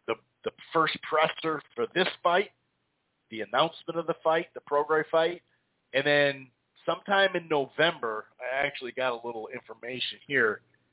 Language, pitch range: English, 130-165 Hz